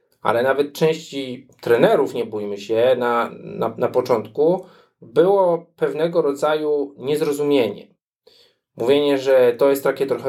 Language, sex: Polish, male